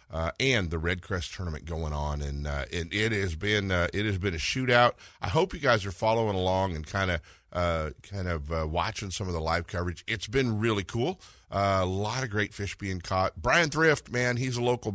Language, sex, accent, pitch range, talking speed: English, male, American, 85-110 Hz, 240 wpm